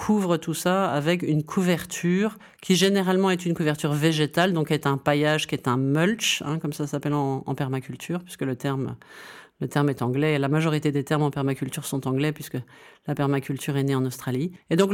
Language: French